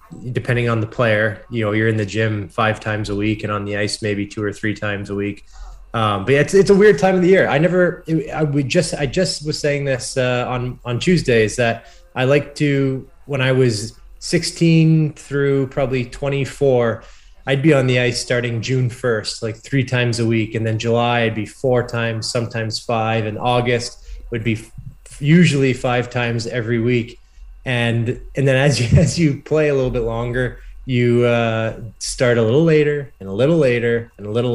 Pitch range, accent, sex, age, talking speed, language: 110-130 Hz, American, male, 20-39, 205 wpm, English